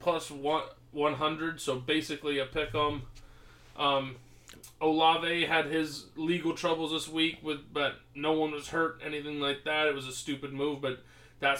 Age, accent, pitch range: 20-39, American, 125-150 Hz